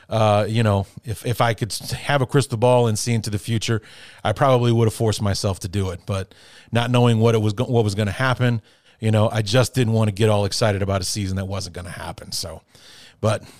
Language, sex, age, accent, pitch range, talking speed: English, male, 30-49, American, 105-125 Hz, 250 wpm